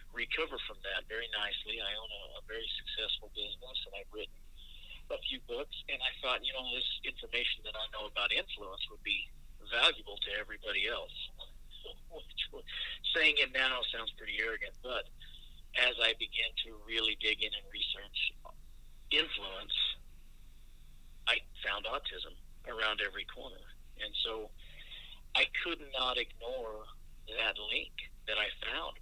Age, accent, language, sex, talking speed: 50-69, American, English, male, 145 wpm